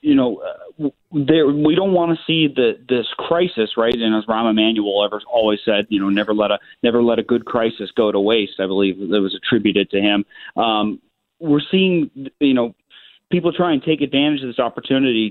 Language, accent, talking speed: English, American, 210 wpm